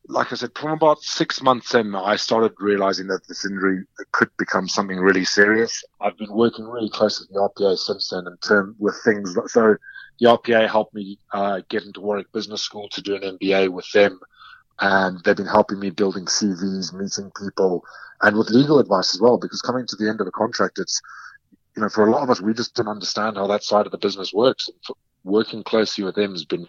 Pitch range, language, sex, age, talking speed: 95-110 Hz, English, male, 30-49, 220 wpm